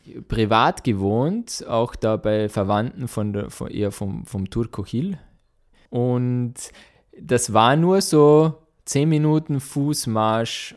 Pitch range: 105-140 Hz